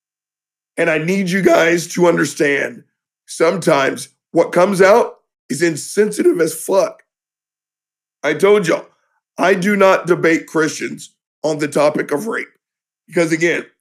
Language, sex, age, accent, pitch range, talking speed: English, male, 50-69, American, 165-210 Hz, 130 wpm